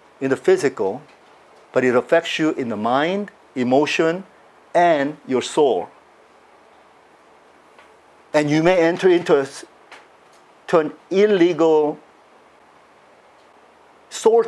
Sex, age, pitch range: male, 50-69, 135-180 Hz